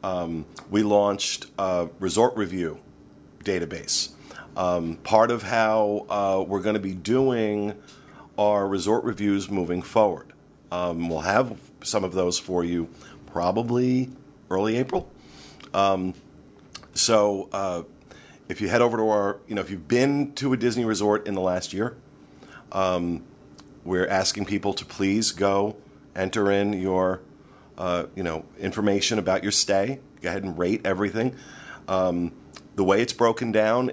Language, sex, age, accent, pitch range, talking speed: English, male, 40-59, American, 90-110 Hz, 145 wpm